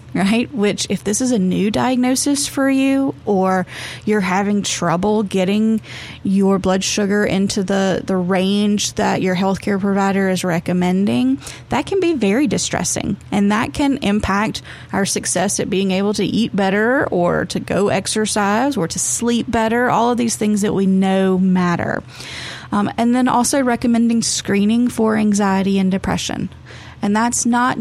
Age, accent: 30-49, American